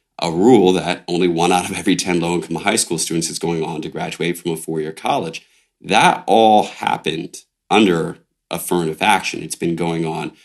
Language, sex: English, male